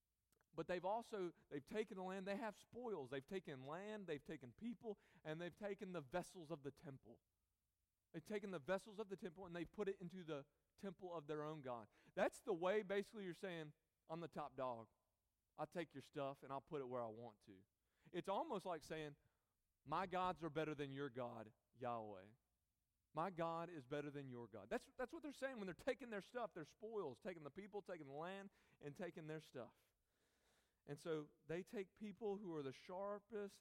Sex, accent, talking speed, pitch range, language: male, American, 205 wpm, 140-200 Hz, English